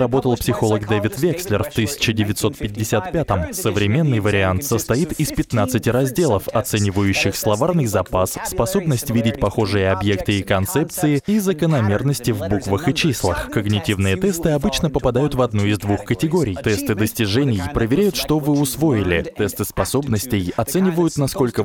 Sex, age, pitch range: male, 20-39, 100-135 Hz